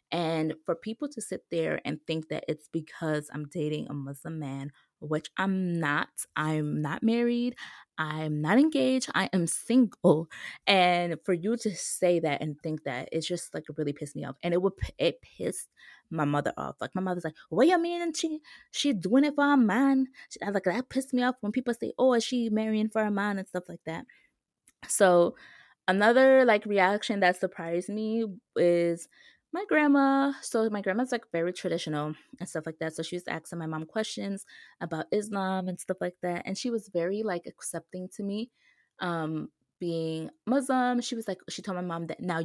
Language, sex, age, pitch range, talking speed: English, female, 20-39, 165-230 Hz, 200 wpm